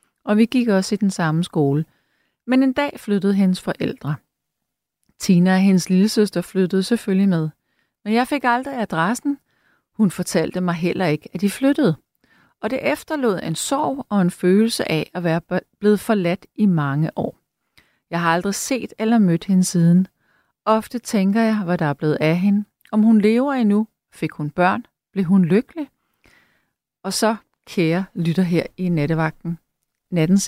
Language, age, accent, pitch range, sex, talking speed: Danish, 30-49, native, 165-220 Hz, female, 165 wpm